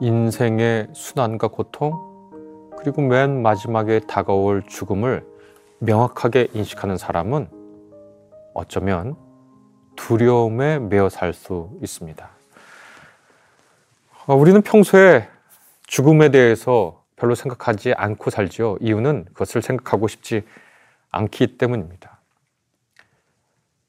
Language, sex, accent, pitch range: Korean, male, native, 105-140 Hz